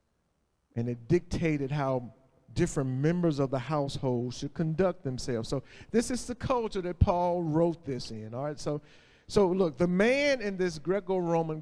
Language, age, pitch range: English, 40-59, 130-175 Hz